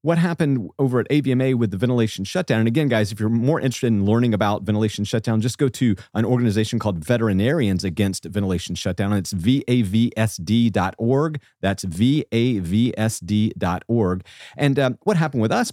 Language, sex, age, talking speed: English, male, 40-59, 155 wpm